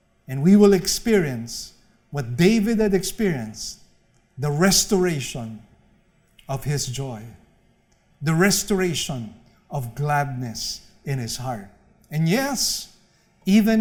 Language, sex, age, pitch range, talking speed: English, male, 50-69, 125-180 Hz, 100 wpm